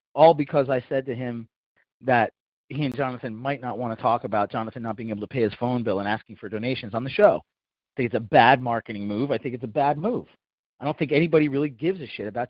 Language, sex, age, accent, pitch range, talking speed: English, male, 30-49, American, 110-140 Hz, 260 wpm